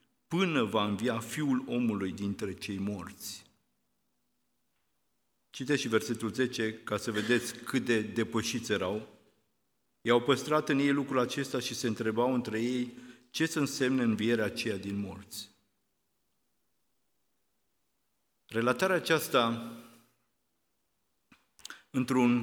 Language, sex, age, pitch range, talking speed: Romanian, male, 50-69, 110-125 Hz, 105 wpm